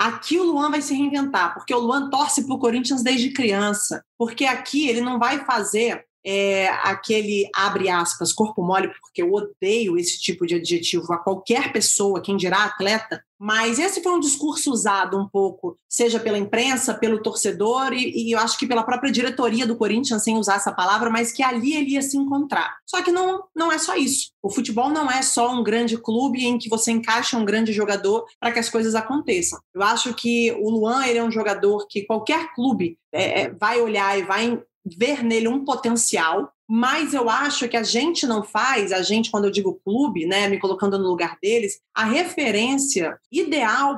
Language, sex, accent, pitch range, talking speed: Portuguese, female, Brazilian, 210-295 Hz, 200 wpm